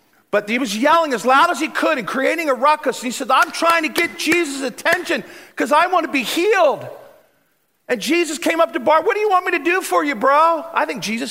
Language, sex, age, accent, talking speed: English, male, 40-59, American, 250 wpm